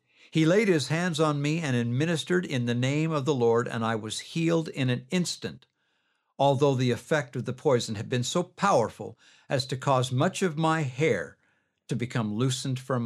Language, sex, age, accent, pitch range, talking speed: English, male, 60-79, American, 105-135 Hz, 195 wpm